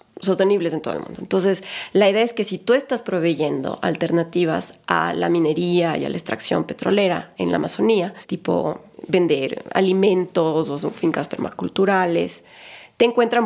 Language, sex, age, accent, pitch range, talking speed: Spanish, female, 30-49, Mexican, 180-235 Hz, 155 wpm